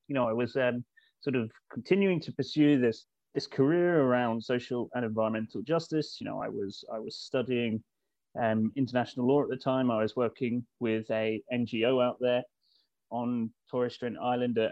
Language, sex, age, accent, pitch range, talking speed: English, male, 30-49, British, 125-150 Hz, 175 wpm